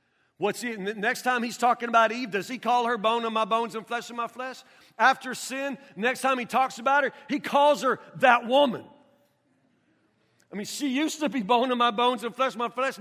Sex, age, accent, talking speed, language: male, 50-69, American, 220 wpm, English